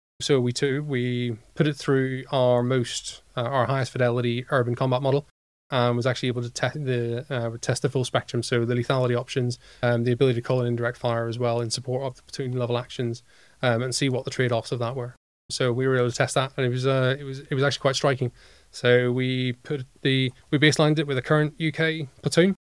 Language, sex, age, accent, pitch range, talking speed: English, male, 20-39, British, 120-135 Hz, 230 wpm